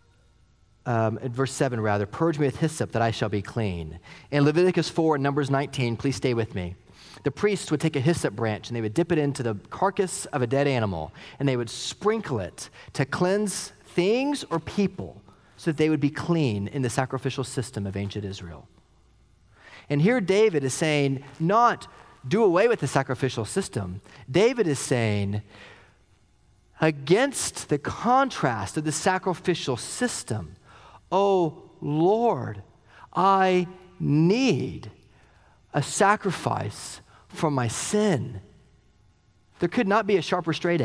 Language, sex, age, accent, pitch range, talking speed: English, male, 30-49, American, 110-165 Hz, 155 wpm